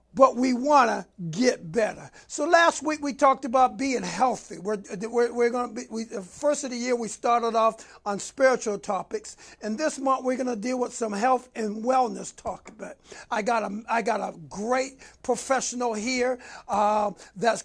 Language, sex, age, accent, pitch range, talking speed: English, male, 60-79, American, 225-265 Hz, 160 wpm